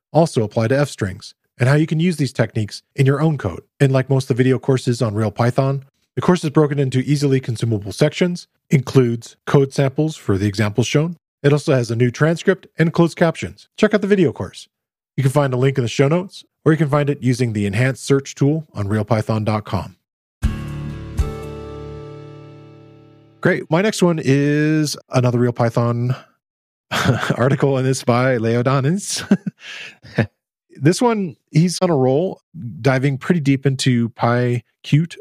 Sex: male